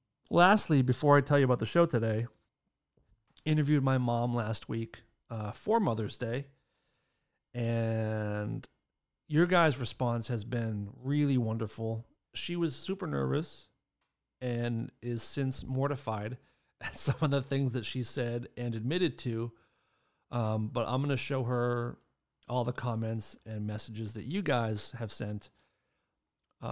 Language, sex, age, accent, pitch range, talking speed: English, male, 40-59, American, 115-145 Hz, 140 wpm